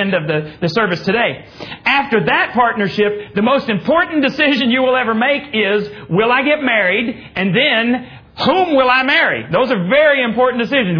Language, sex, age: English, male, 40-59